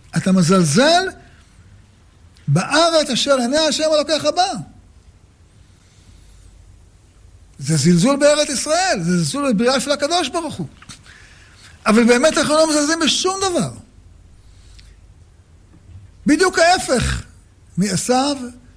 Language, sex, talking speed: Hebrew, male, 95 wpm